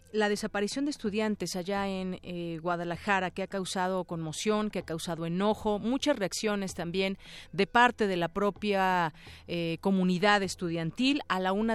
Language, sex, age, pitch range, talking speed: Spanish, female, 40-59, 175-205 Hz, 155 wpm